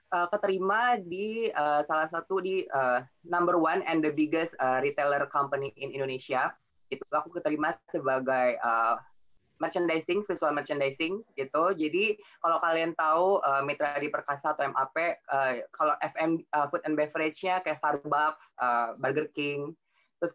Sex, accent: female, native